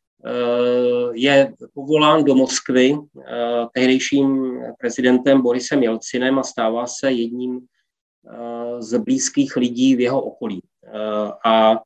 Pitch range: 120-140 Hz